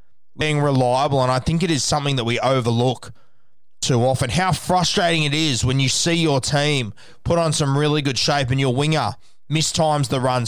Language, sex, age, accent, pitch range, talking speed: English, male, 20-39, Australian, 125-155 Hz, 195 wpm